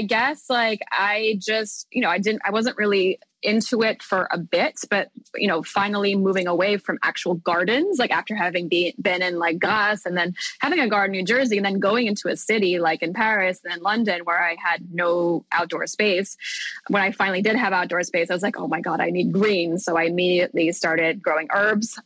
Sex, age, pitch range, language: female, 20-39, 175-215 Hz, English